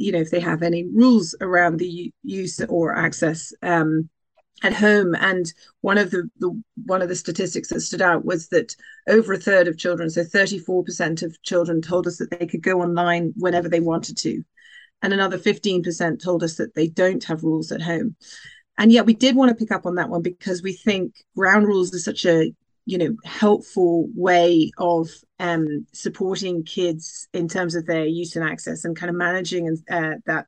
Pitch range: 170-195 Hz